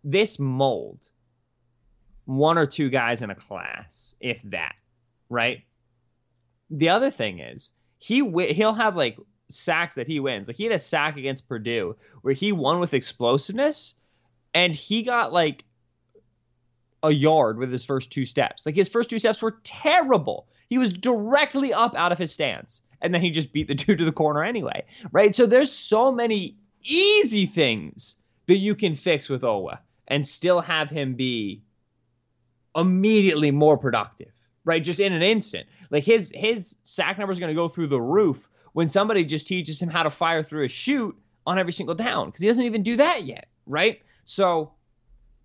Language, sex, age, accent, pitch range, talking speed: English, male, 20-39, American, 130-195 Hz, 180 wpm